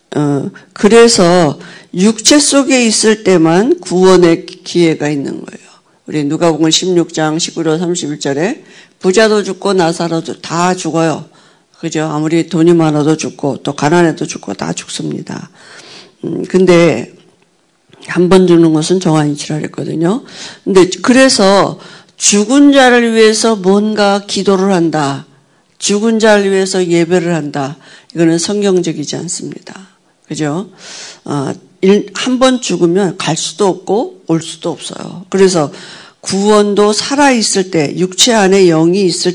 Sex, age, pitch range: female, 50-69, 165-205 Hz